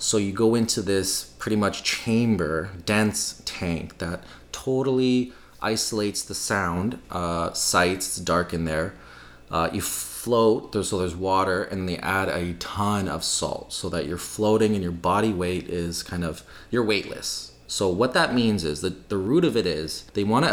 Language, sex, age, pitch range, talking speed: English, male, 30-49, 85-105 Hz, 175 wpm